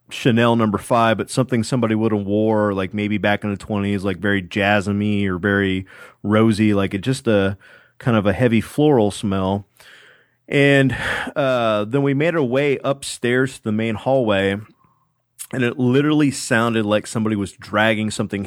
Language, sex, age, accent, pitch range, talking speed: English, male, 30-49, American, 100-120 Hz, 170 wpm